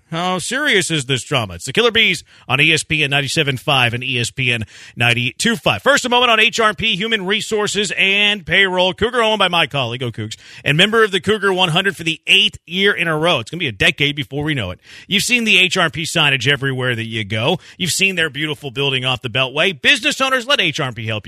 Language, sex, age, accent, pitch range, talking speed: English, male, 40-59, American, 135-190 Hz, 225 wpm